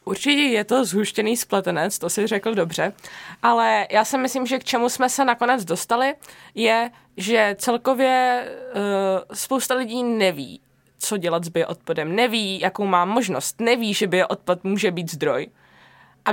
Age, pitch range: 20-39, 185-230 Hz